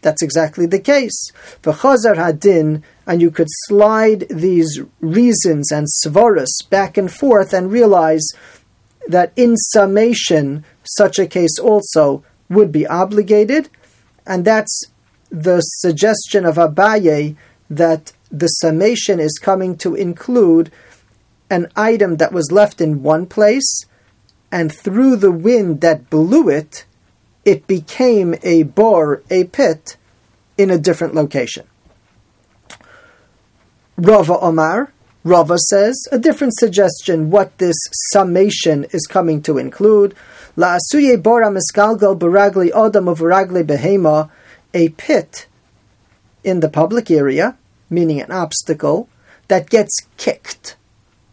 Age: 40-59